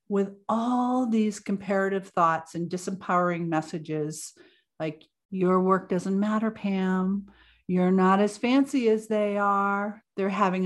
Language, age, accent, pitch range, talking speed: English, 50-69, American, 165-215 Hz, 130 wpm